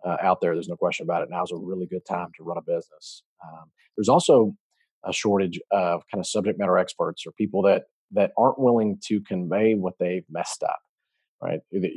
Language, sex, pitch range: English, male, 95-110 Hz